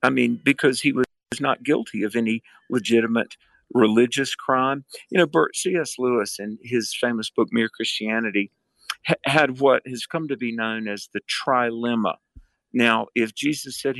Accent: American